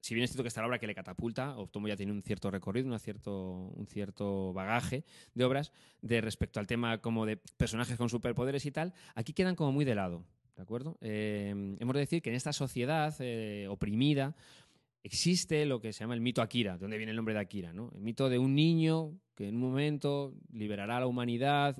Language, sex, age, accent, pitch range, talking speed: Spanish, male, 20-39, Spanish, 110-140 Hz, 225 wpm